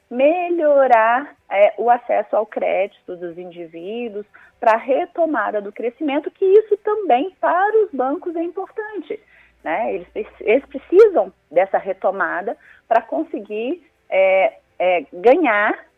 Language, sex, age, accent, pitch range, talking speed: Portuguese, female, 30-49, Brazilian, 220-345 Hz, 115 wpm